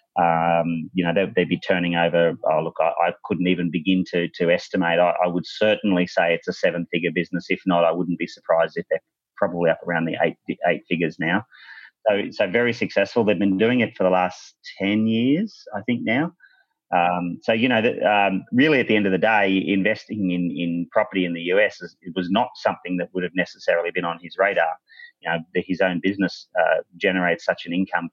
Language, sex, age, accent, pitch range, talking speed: English, male, 30-49, Australian, 85-110 Hz, 215 wpm